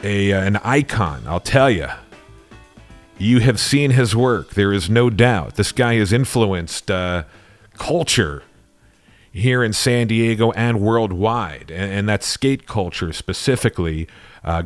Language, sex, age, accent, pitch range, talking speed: English, male, 40-59, American, 95-115 Hz, 145 wpm